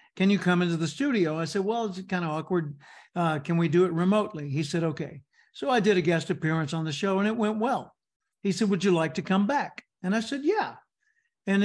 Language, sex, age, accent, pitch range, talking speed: English, male, 60-79, American, 170-215 Hz, 245 wpm